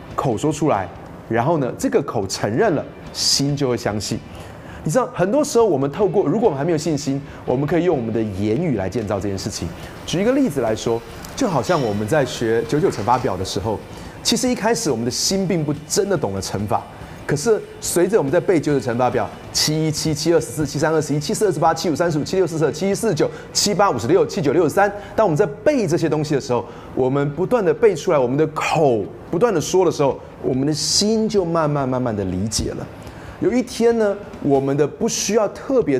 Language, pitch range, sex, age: Chinese, 115-185 Hz, male, 30-49